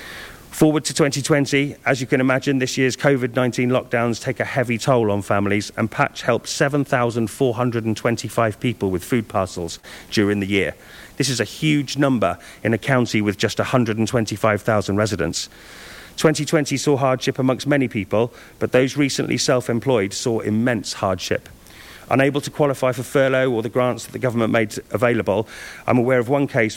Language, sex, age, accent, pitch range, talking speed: English, male, 40-59, British, 110-135 Hz, 160 wpm